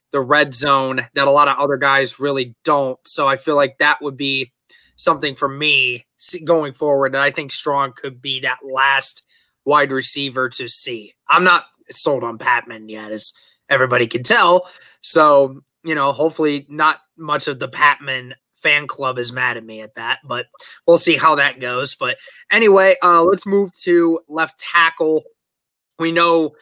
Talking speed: 175 wpm